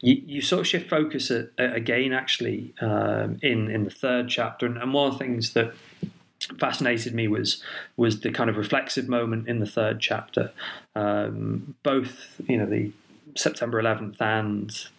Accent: British